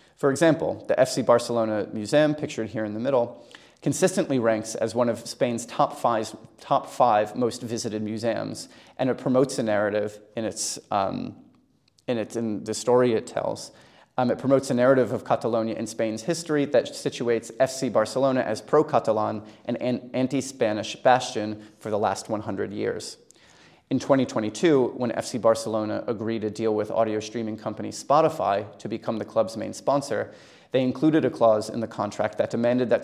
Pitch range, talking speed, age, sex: 110-135 Hz, 175 wpm, 30-49, male